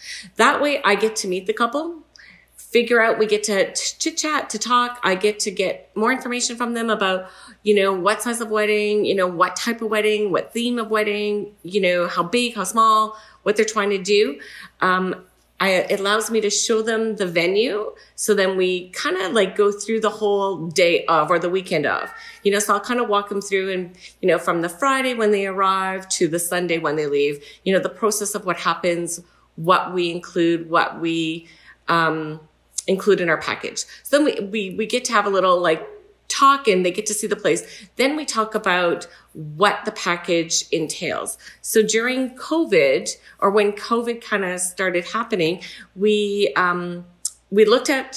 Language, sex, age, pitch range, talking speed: English, female, 40-59, 180-225 Hz, 205 wpm